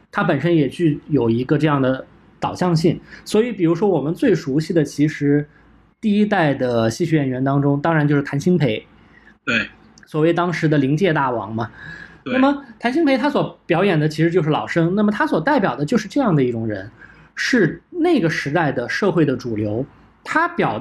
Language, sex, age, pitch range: Chinese, male, 20-39, 145-210 Hz